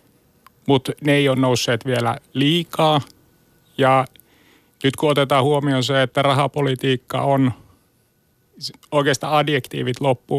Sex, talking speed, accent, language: male, 110 wpm, native, Finnish